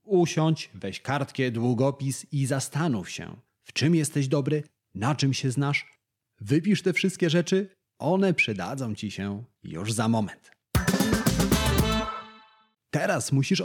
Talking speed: 125 wpm